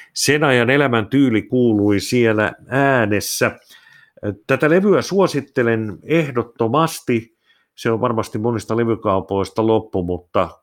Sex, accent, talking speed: male, native, 100 wpm